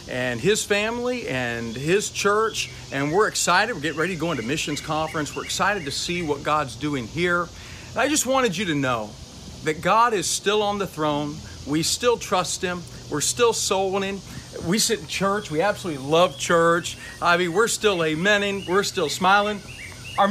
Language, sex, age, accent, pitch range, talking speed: English, male, 50-69, American, 155-210 Hz, 185 wpm